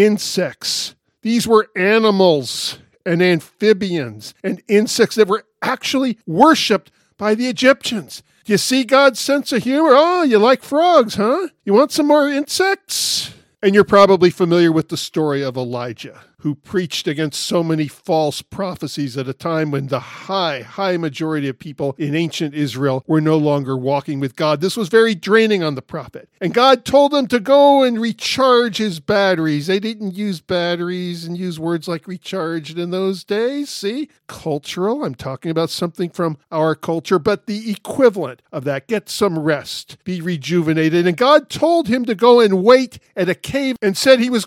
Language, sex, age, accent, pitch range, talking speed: English, male, 50-69, American, 160-235 Hz, 175 wpm